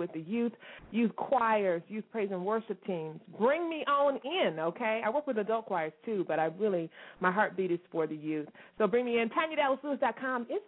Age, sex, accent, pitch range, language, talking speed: 30-49, female, American, 170-240 Hz, English, 200 wpm